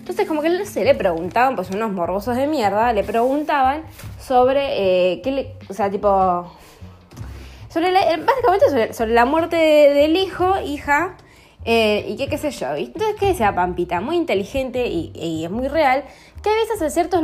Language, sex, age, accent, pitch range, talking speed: Spanish, female, 20-39, Argentinian, 200-310 Hz, 190 wpm